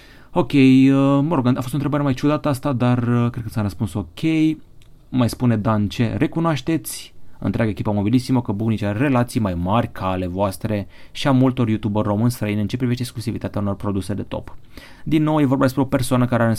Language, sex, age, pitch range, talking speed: Romanian, male, 30-49, 100-135 Hz, 210 wpm